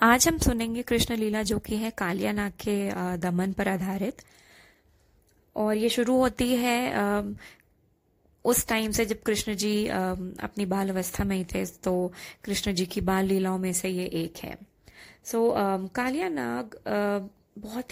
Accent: Indian